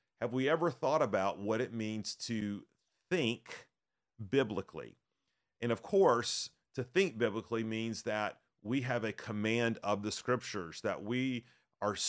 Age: 40-59